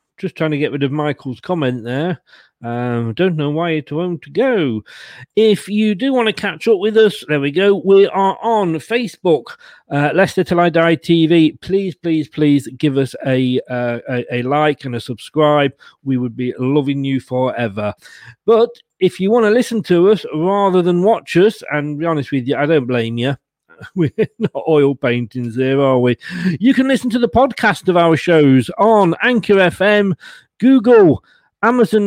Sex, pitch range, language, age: male, 135-190 Hz, English, 40-59